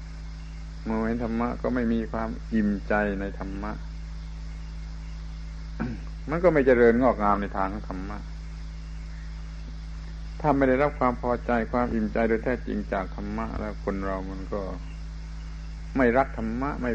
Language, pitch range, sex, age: Thai, 80-115 Hz, male, 60-79